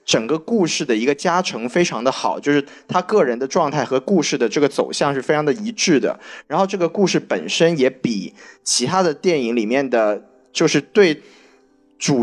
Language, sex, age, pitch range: Chinese, male, 20-39, 130-180 Hz